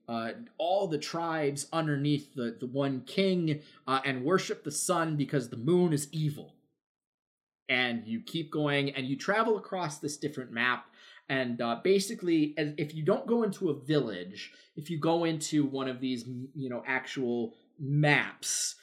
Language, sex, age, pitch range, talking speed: English, male, 30-49, 120-150 Hz, 165 wpm